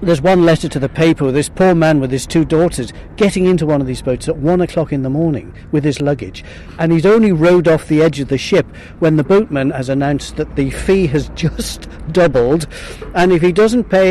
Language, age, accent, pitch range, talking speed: English, 50-69, British, 135-175 Hz, 230 wpm